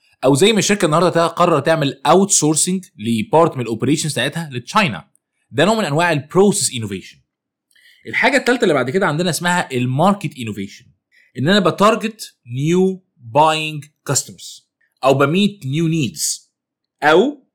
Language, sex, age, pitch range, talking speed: Arabic, male, 20-39, 130-180 Hz, 135 wpm